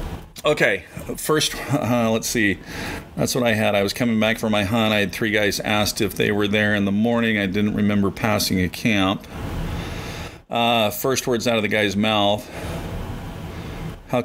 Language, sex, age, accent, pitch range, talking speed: English, male, 40-59, American, 100-120 Hz, 180 wpm